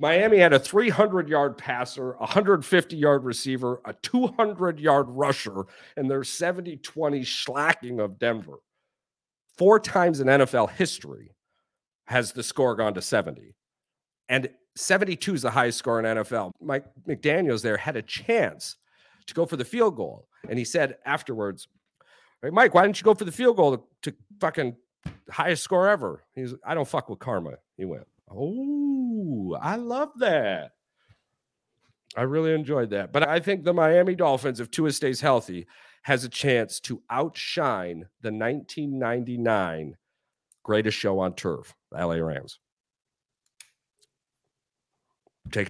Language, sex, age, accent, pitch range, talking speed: English, male, 50-69, American, 105-160 Hz, 145 wpm